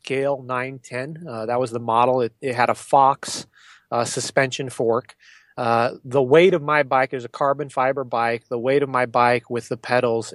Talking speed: 205 wpm